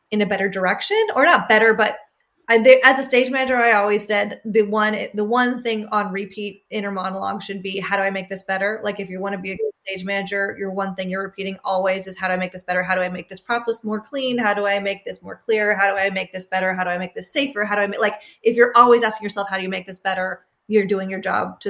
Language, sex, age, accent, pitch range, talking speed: English, female, 20-39, American, 195-230 Hz, 290 wpm